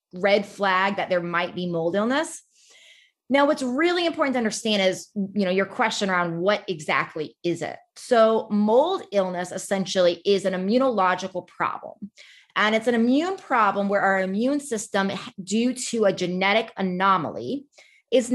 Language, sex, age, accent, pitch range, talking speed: English, female, 30-49, American, 190-255 Hz, 155 wpm